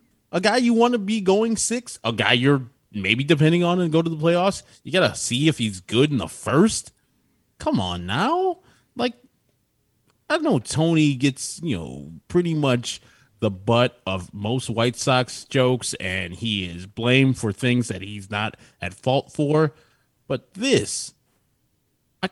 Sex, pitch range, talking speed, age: male, 100-135 Hz, 170 wpm, 30-49